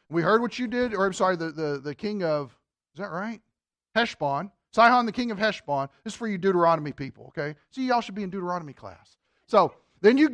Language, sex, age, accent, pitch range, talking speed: English, male, 40-59, American, 175-260 Hz, 225 wpm